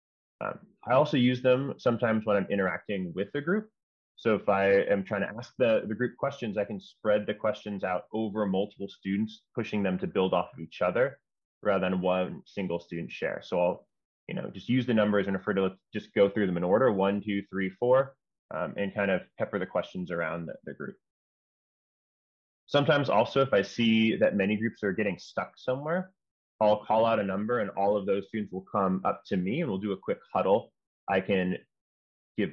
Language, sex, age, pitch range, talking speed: English, male, 20-39, 95-110 Hz, 210 wpm